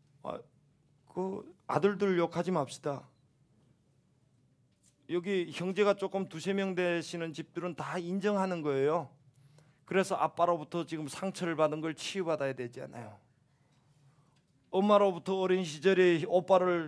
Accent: native